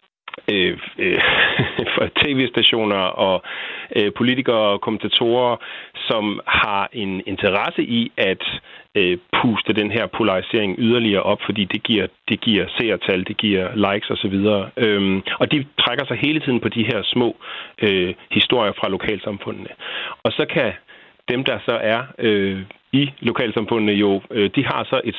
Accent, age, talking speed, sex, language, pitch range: native, 40-59, 150 wpm, male, Danish, 95-115 Hz